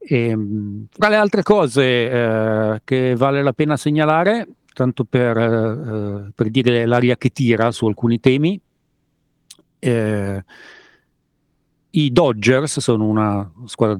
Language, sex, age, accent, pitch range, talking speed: Italian, male, 40-59, native, 110-135 Hz, 110 wpm